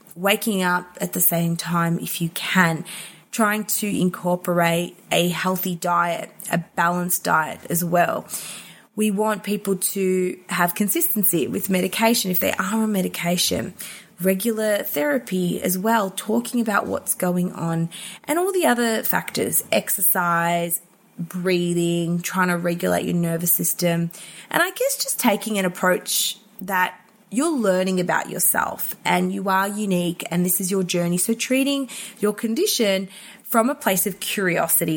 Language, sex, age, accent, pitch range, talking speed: English, female, 20-39, Australian, 175-215 Hz, 145 wpm